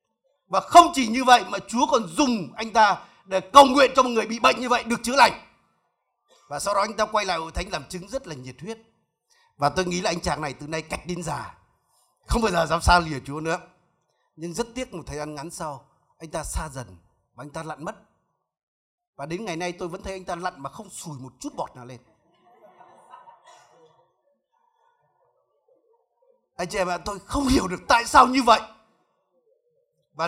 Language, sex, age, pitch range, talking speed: Vietnamese, male, 30-49, 165-250 Hz, 210 wpm